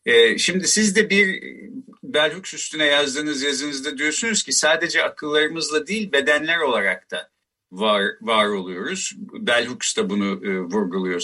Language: Turkish